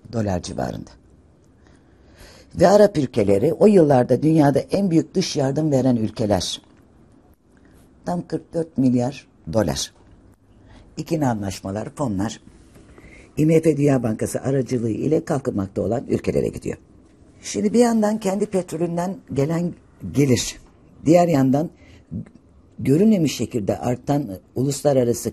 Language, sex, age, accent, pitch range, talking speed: Turkish, female, 60-79, native, 105-155 Hz, 100 wpm